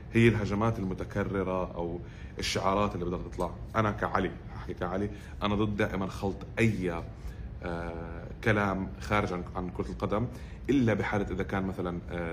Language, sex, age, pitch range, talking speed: Arabic, male, 30-49, 90-105 Hz, 130 wpm